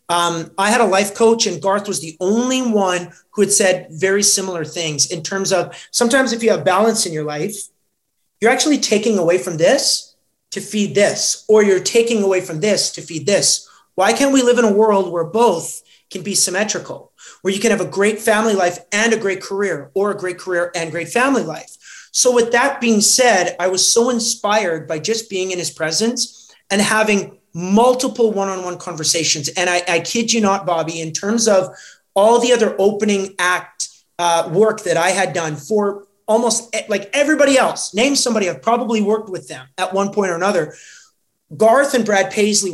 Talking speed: 200 wpm